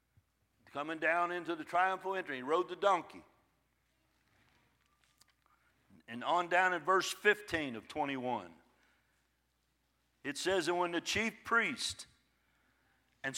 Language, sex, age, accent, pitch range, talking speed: English, male, 60-79, American, 155-200 Hz, 115 wpm